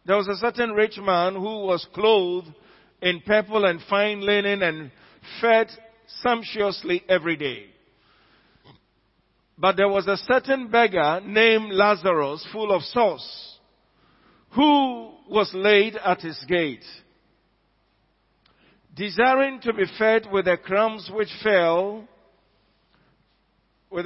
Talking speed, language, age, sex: 115 wpm, English, 50-69, male